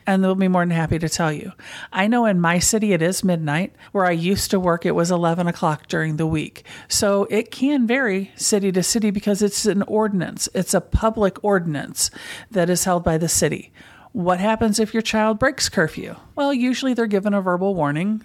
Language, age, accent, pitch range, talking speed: English, 50-69, American, 165-210 Hz, 210 wpm